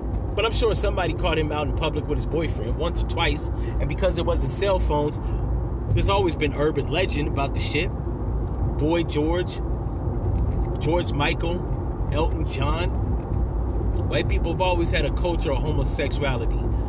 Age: 30-49